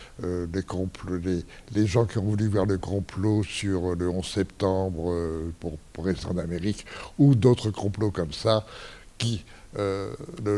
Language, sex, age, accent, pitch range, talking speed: French, male, 60-79, French, 95-120 Hz, 170 wpm